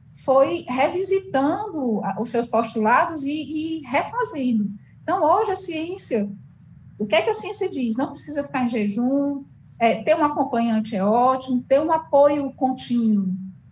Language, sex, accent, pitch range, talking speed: Portuguese, female, Brazilian, 200-275 Hz, 150 wpm